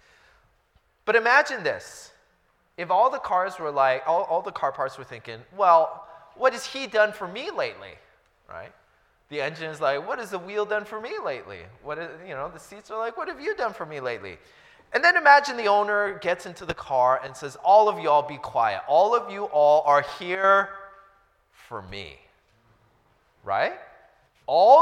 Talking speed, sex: 190 wpm, male